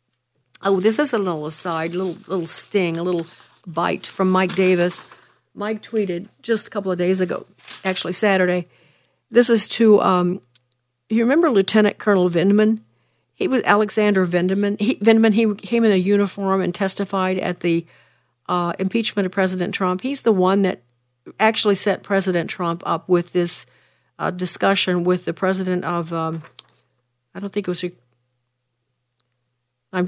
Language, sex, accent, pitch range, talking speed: English, female, American, 170-200 Hz, 155 wpm